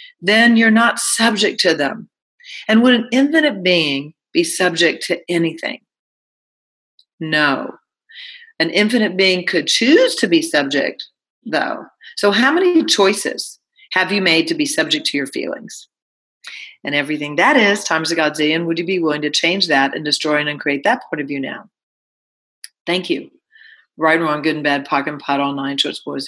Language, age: English, 40-59